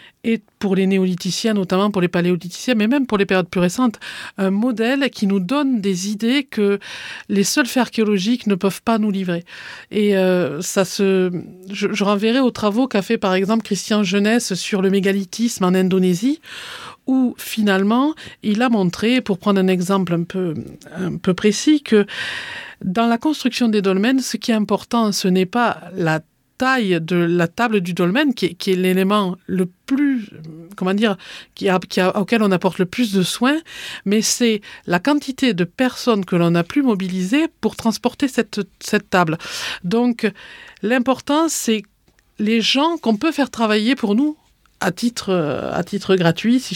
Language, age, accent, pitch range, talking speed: English, 50-69, French, 185-240 Hz, 180 wpm